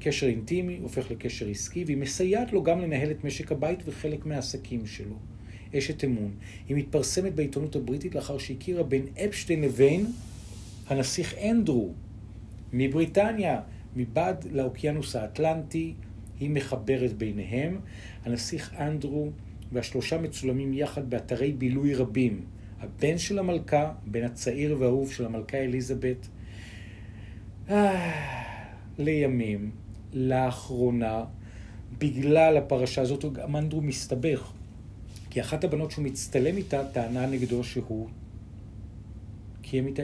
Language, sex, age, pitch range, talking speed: Hebrew, male, 40-59, 110-145 Hz, 105 wpm